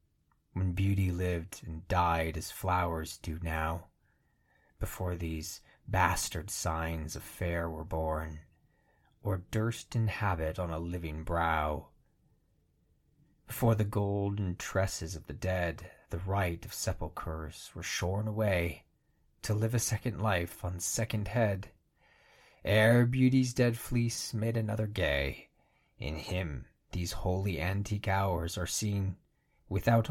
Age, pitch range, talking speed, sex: 30-49, 85-110 Hz, 125 wpm, male